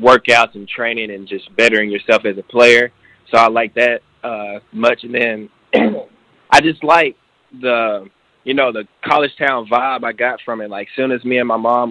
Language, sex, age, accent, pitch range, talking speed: English, male, 20-39, American, 115-135 Hz, 200 wpm